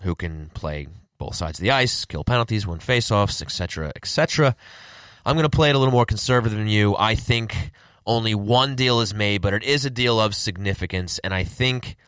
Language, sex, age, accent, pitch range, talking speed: English, male, 20-39, American, 90-115 Hz, 220 wpm